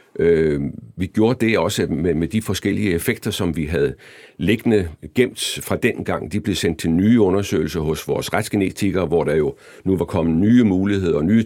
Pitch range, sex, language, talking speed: 85-110 Hz, male, Danish, 190 wpm